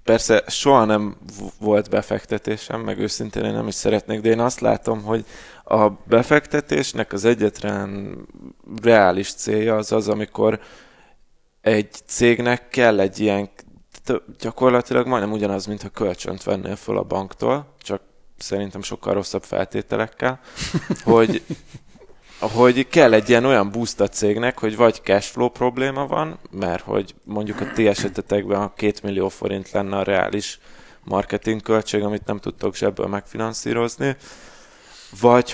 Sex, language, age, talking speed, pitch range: male, Hungarian, 20-39, 135 wpm, 100-115 Hz